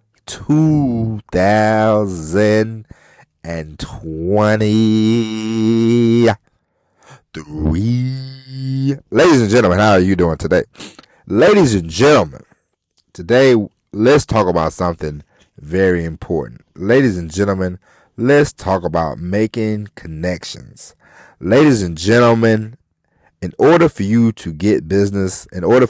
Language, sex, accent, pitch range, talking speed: English, male, American, 85-110 Hz, 90 wpm